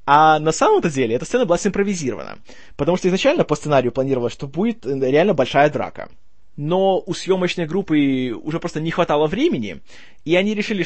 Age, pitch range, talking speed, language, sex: 20-39, 130-180 Hz, 170 wpm, Russian, male